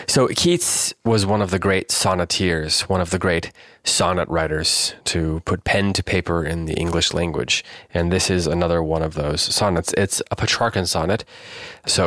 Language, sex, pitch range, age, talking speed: English, male, 85-100 Hz, 20-39, 180 wpm